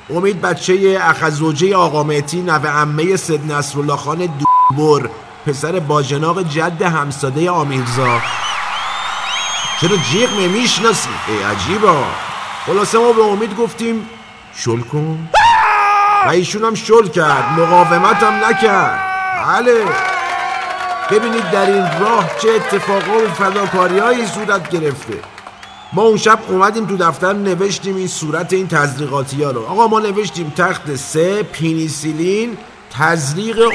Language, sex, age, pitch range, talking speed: Persian, male, 50-69, 160-220 Hz, 110 wpm